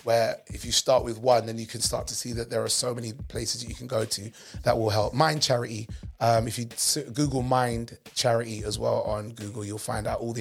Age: 30-49